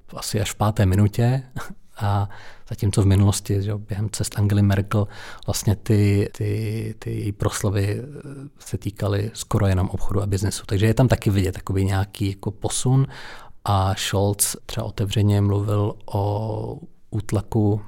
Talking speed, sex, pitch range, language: 140 wpm, male, 100-110 Hz, Czech